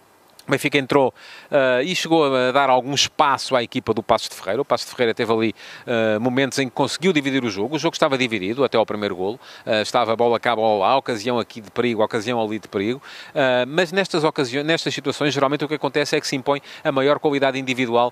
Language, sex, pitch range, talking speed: Portuguese, male, 115-150 Hz, 245 wpm